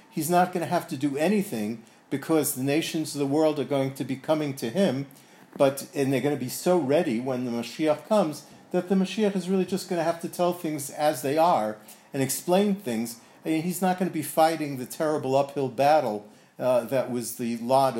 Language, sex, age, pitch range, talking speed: English, male, 50-69, 130-160 Hz, 230 wpm